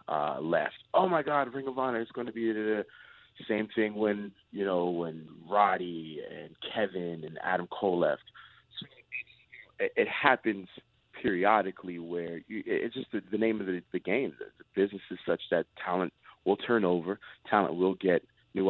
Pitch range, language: 85-105 Hz, English